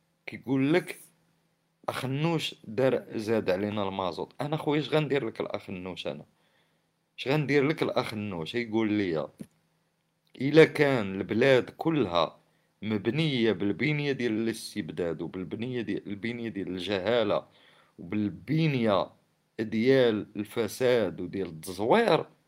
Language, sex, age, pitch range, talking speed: Arabic, male, 50-69, 105-145 Hz, 100 wpm